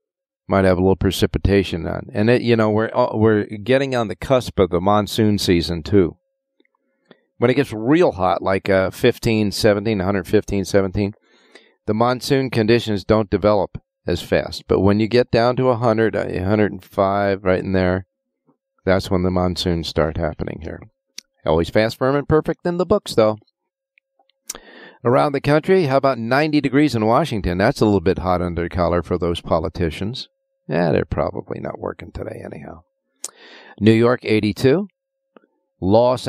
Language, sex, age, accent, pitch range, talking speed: English, male, 50-69, American, 95-135 Hz, 160 wpm